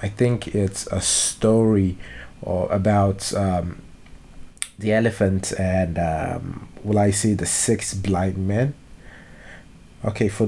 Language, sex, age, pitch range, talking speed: English, male, 20-39, 100-110 Hz, 120 wpm